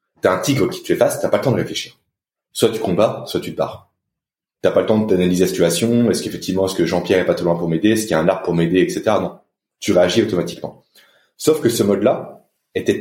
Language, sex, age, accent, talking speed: French, male, 30-49, French, 260 wpm